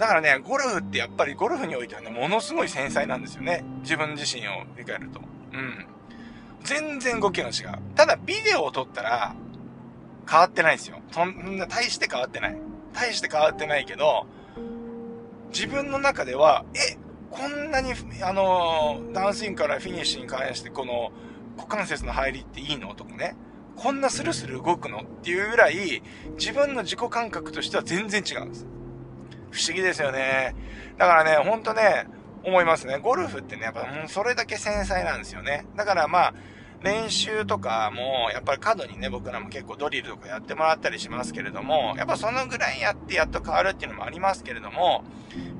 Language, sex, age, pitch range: Japanese, male, 20-39, 135-225 Hz